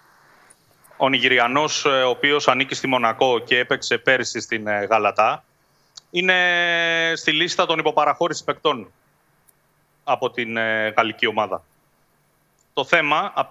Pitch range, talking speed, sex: 130-170 Hz, 110 wpm, male